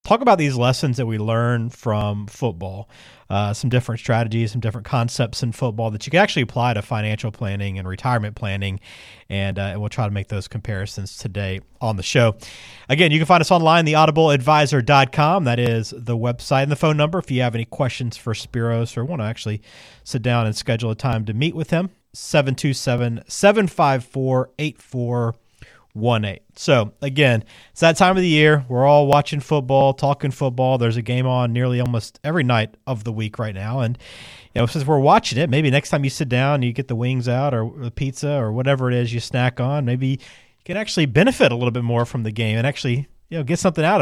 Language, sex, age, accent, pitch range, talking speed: English, male, 40-59, American, 115-145 Hz, 215 wpm